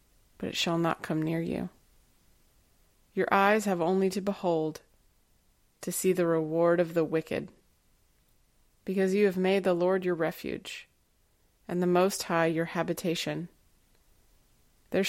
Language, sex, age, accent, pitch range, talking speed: English, female, 20-39, American, 160-185 Hz, 140 wpm